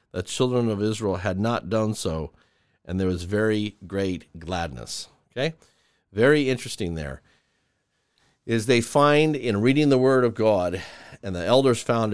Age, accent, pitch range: 50-69, American, 100-140 Hz